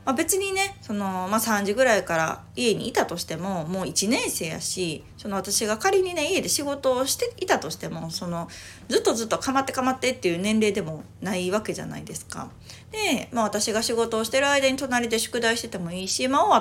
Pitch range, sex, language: 180-260 Hz, female, Japanese